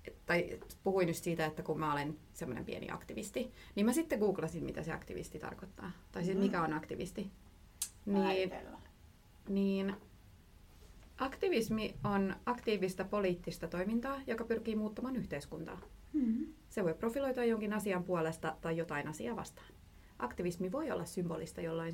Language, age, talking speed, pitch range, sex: Finnish, 30-49, 135 wpm, 165-215 Hz, female